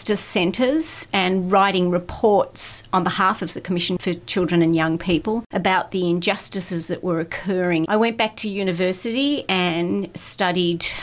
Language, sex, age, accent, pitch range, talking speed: English, female, 40-59, Australian, 175-215 Hz, 145 wpm